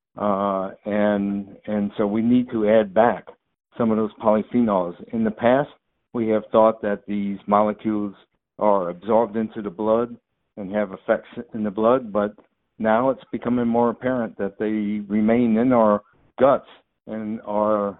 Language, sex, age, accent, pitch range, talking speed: English, male, 60-79, American, 105-120 Hz, 155 wpm